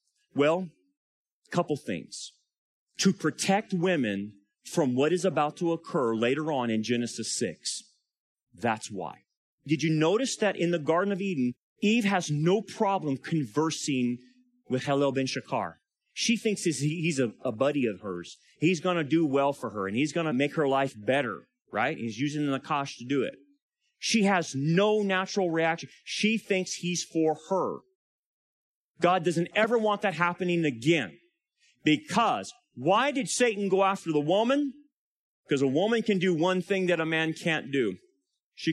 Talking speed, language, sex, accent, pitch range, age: 165 wpm, English, male, American, 150-200 Hz, 30-49